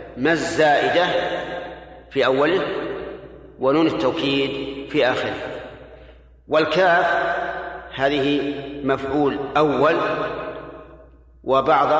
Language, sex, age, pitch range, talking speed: Arabic, male, 40-59, 135-185 Hz, 65 wpm